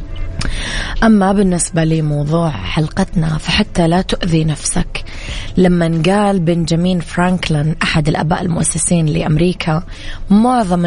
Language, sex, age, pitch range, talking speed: English, female, 20-39, 155-185 Hz, 95 wpm